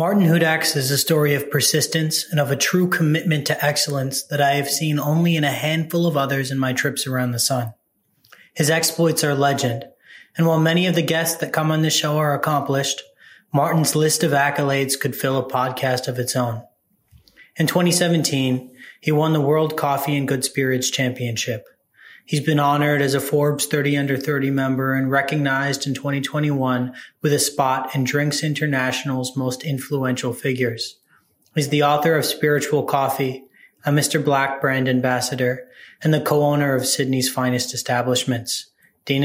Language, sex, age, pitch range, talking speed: English, male, 20-39, 130-150 Hz, 170 wpm